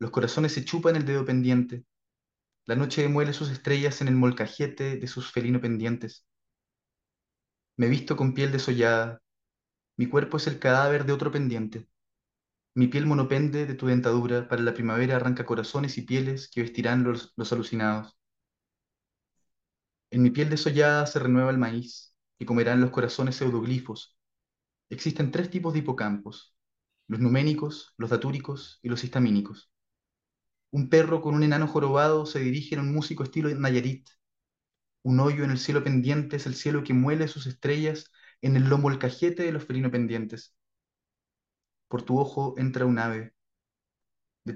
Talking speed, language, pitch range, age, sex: 160 wpm, Spanish, 120-145 Hz, 20-39, male